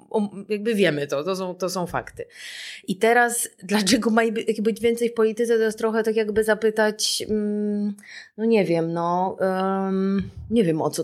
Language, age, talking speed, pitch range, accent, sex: Polish, 20-39, 160 wpm, 175-220 Hz, native, female